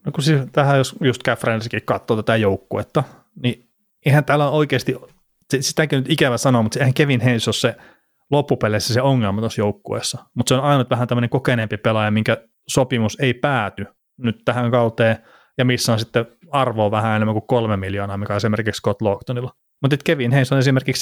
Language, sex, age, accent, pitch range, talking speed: Finnish, male, 30-49, native, 110-135 Hz, 185 wpm